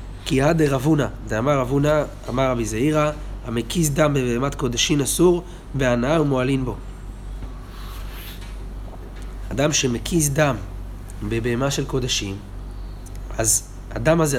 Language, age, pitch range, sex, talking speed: Hebrew, 30-49, 100-145 Hz, male, 110 wpm